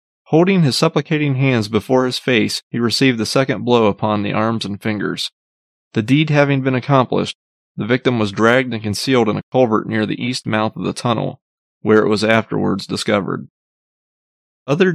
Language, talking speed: English, 175 wpm